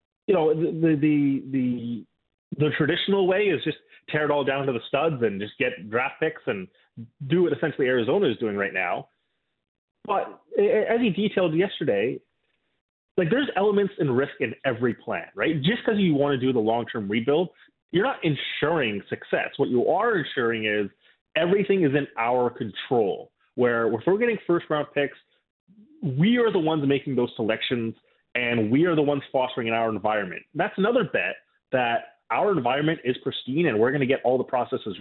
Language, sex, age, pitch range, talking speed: English, male, 30-49, 120-175 Hz, 180 wpm